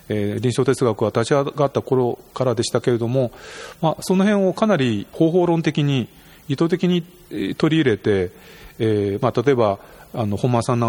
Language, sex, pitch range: Japanese, male, 115-170 Hz